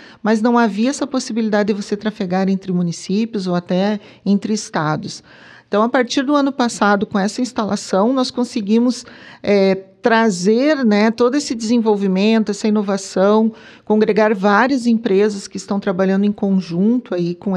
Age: 40-59